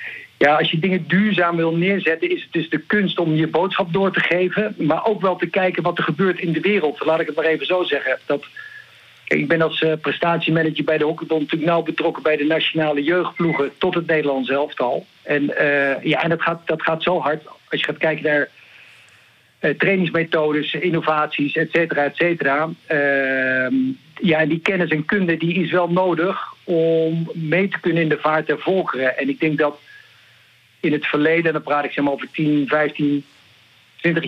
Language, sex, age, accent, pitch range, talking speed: Dutch, male, 50-69, Dutch, 150-170 Hz, 200 wpm